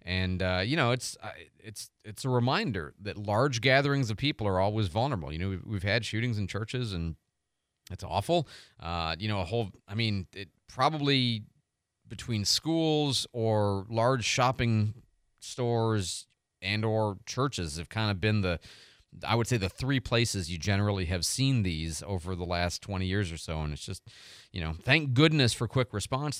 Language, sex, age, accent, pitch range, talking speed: English, male, 30-49, American, 95-125 Hz, 175 wpm